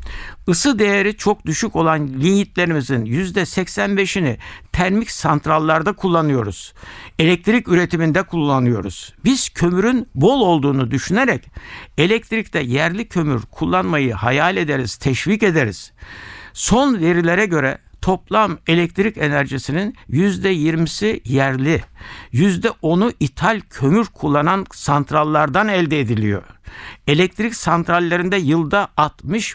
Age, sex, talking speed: 60-79, male, 95 wpm